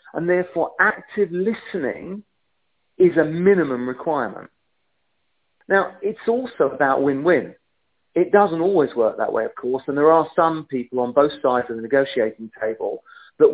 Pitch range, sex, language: 135-190 Hz, male, English